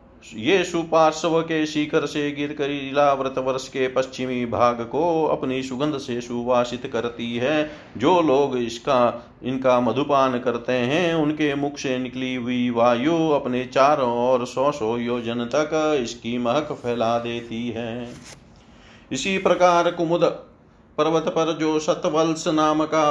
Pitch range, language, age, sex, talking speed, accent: 120-145 Hz, Hindi, 40-59, male, 125 wpm, native